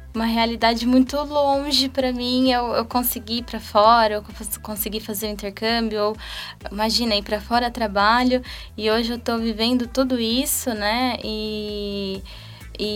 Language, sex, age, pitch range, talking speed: Portuguese, female, 10-29, 190-225 Hz, 150 wpm